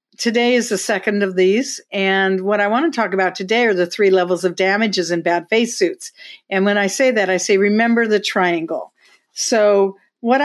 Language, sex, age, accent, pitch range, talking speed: English, female, 50-69, American, 195-235 Hz, 205 wpm